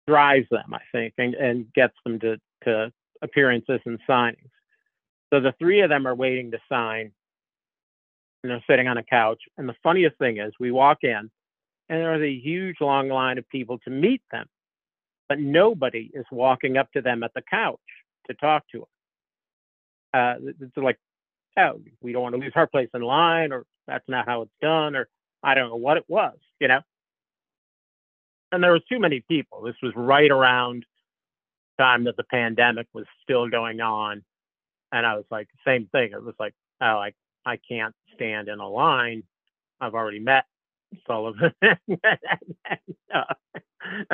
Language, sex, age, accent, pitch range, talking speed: English, male, 50-69, American, 115-140 Hz, 175 wpm